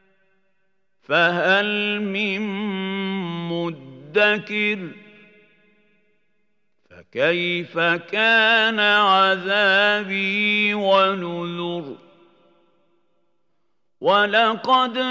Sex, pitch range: male, 175-210 Hz